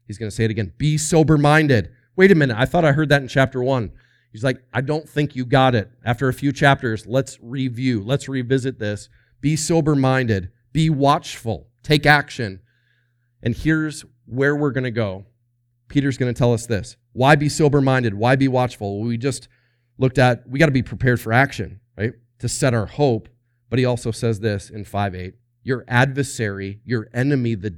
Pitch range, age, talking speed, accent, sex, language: 115-140 Hz, 30-49, 190 wpm, American, male, English